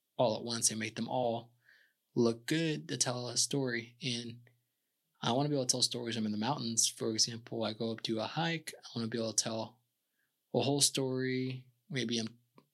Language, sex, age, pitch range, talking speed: English, male, 20-39, 110-125 Hz, 215 wpm